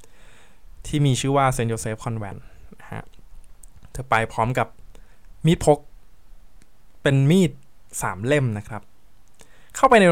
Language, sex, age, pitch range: Thai, male, 20-39, 105-135 Hz